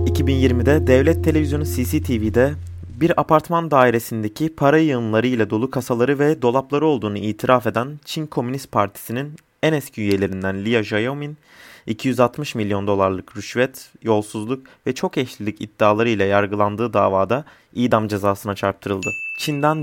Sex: male